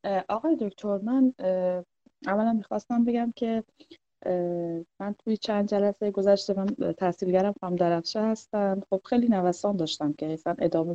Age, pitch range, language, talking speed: 20-39, 175-210 Hz, Persian, 125 wpm